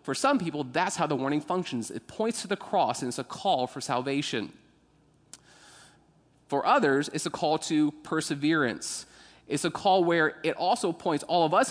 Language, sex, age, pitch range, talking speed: English, male, 30-49, 140-185 Hz, 185 wpm